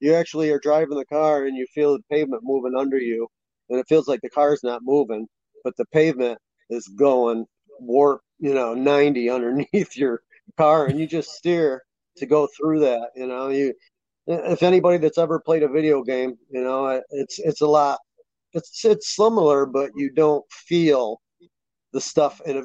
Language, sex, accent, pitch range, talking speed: English, male, American, 125-155 Hz, 185 wpm